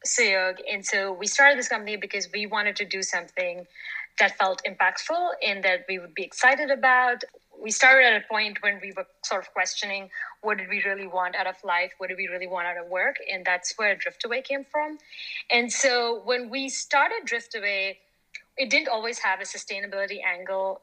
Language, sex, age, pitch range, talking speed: English, female, 30-49, 185-245 Hz, 200 wpm